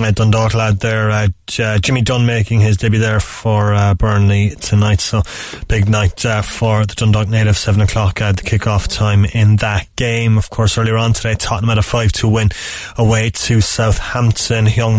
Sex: male